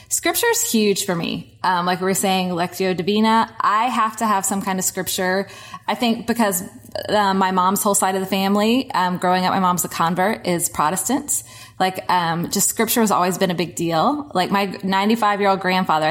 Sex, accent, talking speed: female, American, 200 wpm